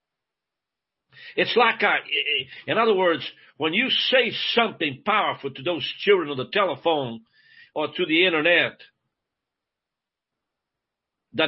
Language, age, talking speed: English, 60-79, 115 wpm